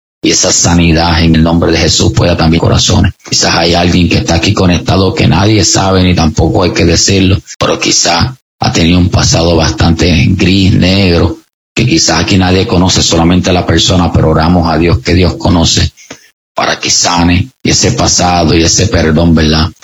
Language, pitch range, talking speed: English, 85-100 Hz, 185 wpm